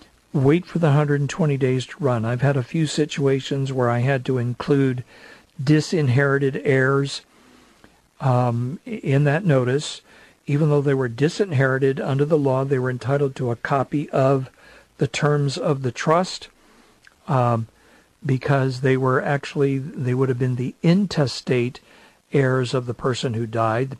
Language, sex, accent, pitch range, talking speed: English, male, American, 120-145 Hz, 155 wpm